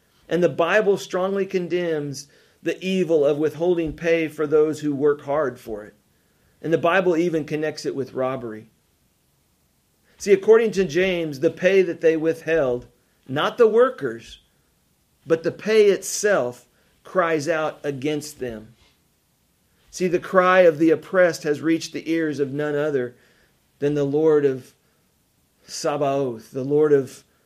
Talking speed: 145 wpm